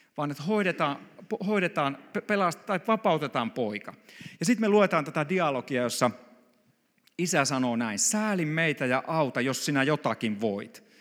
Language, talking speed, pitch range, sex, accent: Finnish, 140 wpm, 125-180 Hz, male, native